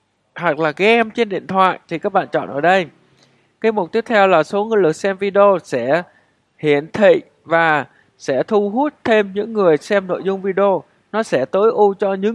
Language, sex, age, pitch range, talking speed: Vietnamese, male, 20-39, 155-205 Hz, 205 wpm